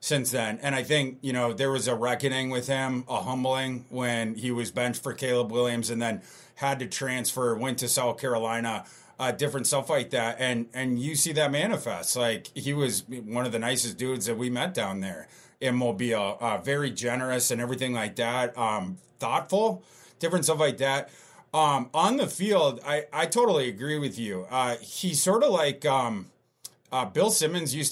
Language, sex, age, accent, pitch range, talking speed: English, male, 30-49, American, 125-160 Hz, 195 wpm